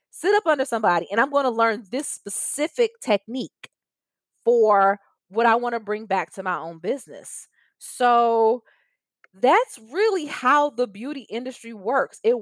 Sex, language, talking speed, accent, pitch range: female, English, 155 wpm, American, 205-275 Hz